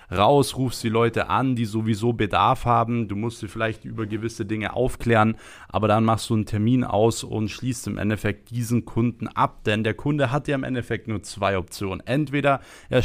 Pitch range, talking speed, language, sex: 105-120 Hz, 200 wpm, German, male